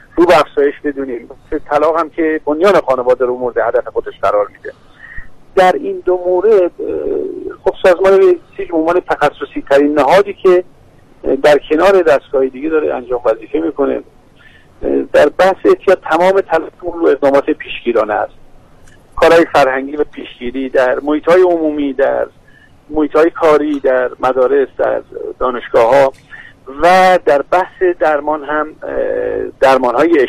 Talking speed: 130 wpm